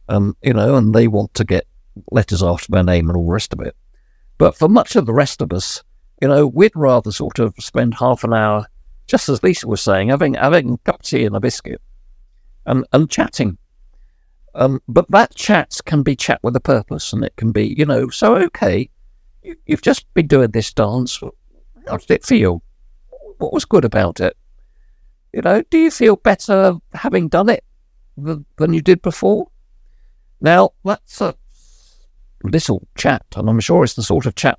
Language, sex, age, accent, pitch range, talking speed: English, male, 50-69, British, 95-145 Hz, 195 wpm